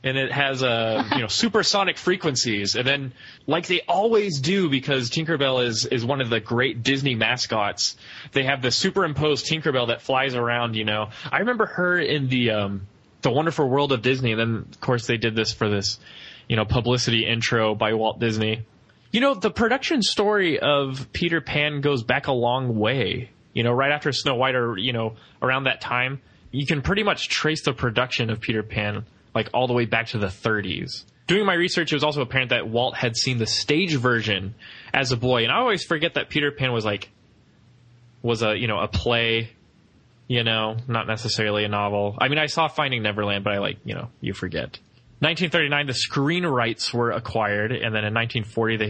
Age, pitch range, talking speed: 20-39, 110-145 Hz, 200 wpm